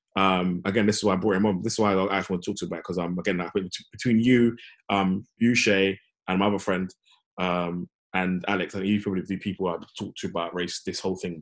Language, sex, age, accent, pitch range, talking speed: English, male, 20-39, British, 95-155 Hz, 270 wpm